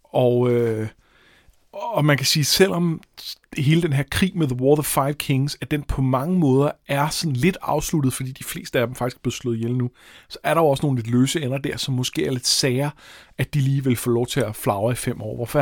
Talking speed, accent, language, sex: 255 wpm, native, Danish, male